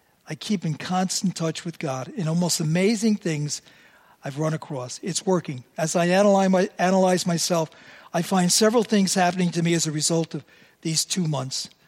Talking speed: 175 wpm